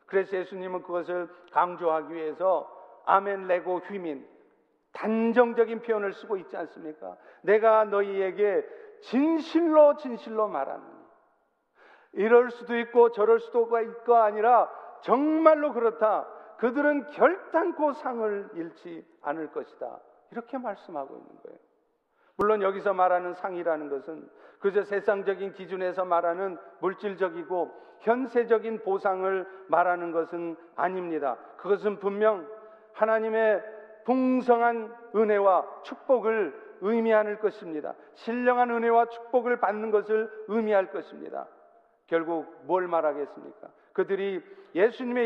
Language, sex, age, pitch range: Korean, male, 50-69, 185-240 Hz